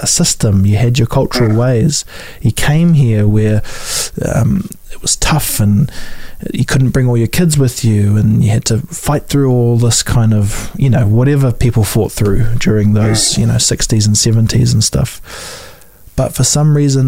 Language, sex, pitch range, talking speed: English, male, 110-130 Hz, 185 wpm